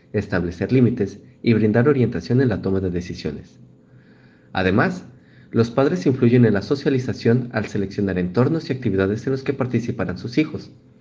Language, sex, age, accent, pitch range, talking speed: Spanish, male, 40-59, Mexican, 95-125 Hz, 155 wpm